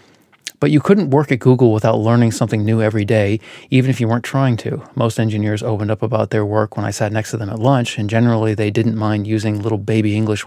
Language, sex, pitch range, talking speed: English, male, 105-125 Hz, 240 wpm